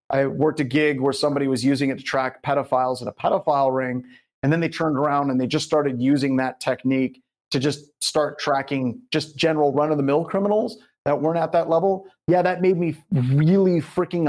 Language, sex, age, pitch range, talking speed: English, male, 30-49, 130-155 Hz, 195 wpm